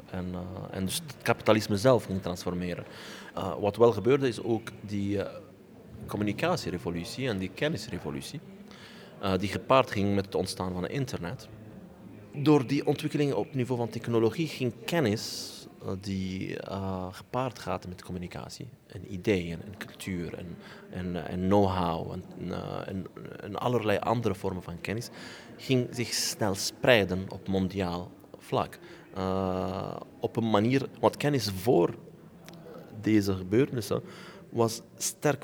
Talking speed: 145 wpm